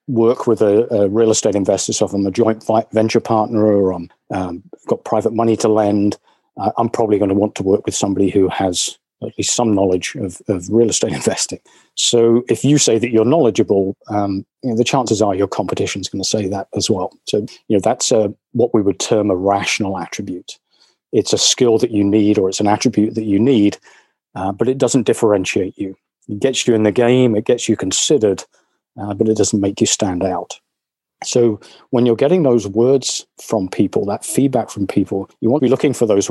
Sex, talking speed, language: male, 220 wpm, English